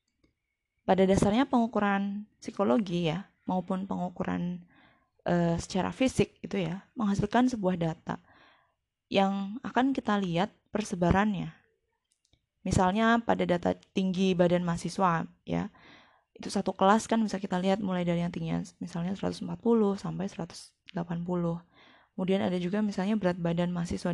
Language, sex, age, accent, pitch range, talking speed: Indonesian, female, 20-39, native, 175-220 Hz, 120 wpm